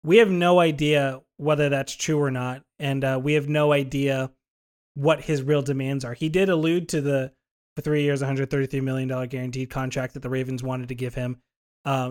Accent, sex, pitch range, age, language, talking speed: American, male, 130-160 Hz, 20-39, English, 200 wpm